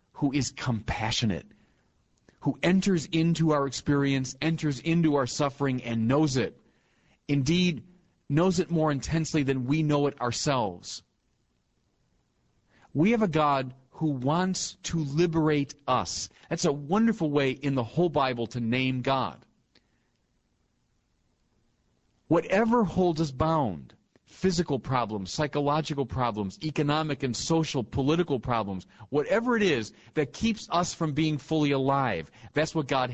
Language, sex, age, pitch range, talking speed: English, male, 40-59, 120-155 Hz, 130 wpm